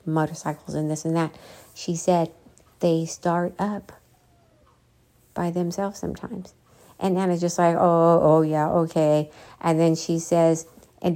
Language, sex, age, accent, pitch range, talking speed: English, female, 50-69, American, 160-180 Hz, 140 wpm